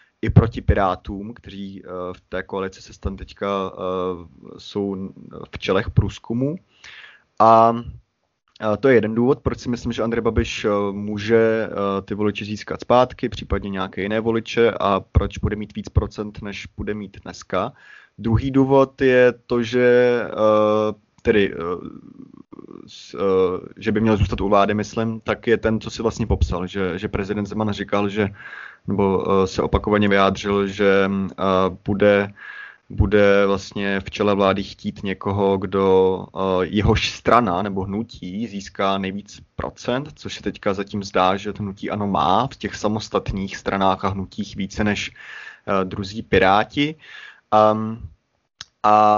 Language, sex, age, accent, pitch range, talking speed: Czech, male, 20-39, native, 95-115 Hz, 145 wpm